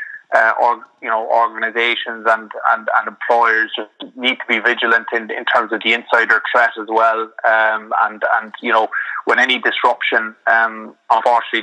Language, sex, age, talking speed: English, male, 30-49, 170 wpm